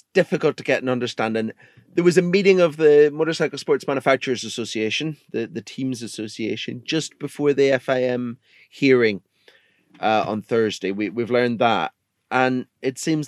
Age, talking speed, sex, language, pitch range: 30-49, 160 wpm, male, English, 115-150 Hz